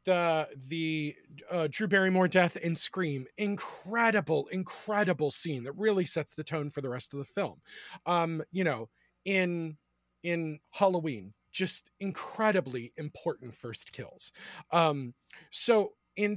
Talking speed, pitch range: 135 wpm, 150-190 Hz